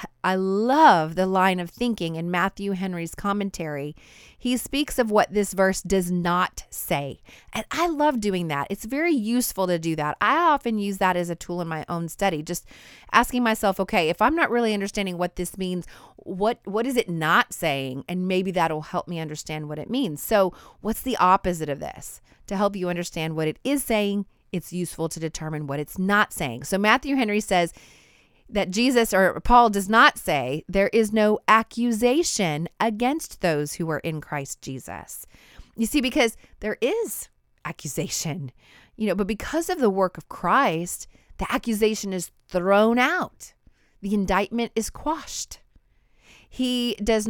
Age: 30-49